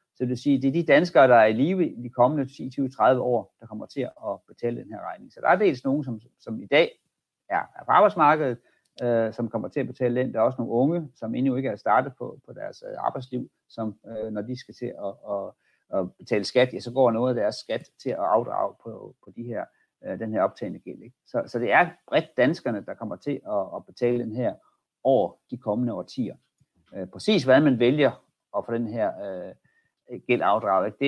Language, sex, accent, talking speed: Danish, male, native, 235 wpm